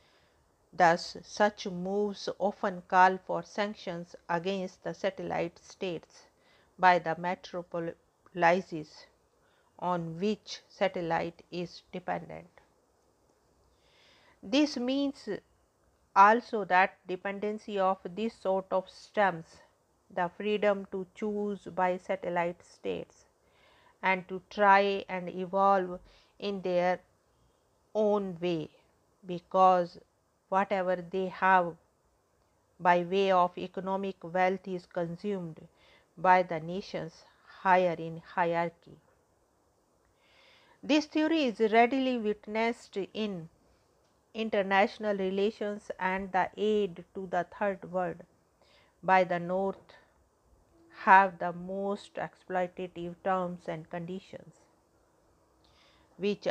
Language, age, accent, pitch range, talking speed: English, 50-69, Indian, 180-205 Hz, 95 wpm